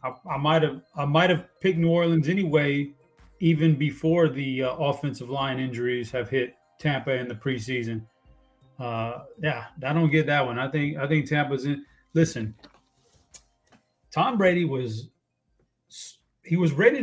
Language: English